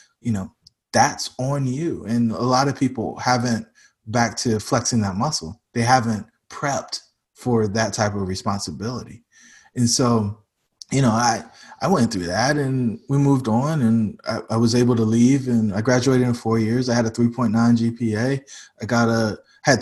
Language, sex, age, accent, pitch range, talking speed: English, male, 20-39, American, 110-120 Hz, 180 wpm